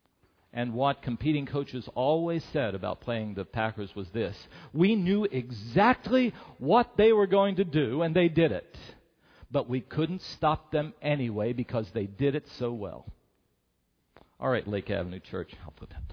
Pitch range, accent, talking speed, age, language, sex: 90-130 Hz, American, 165 wpm, 50-69, English, male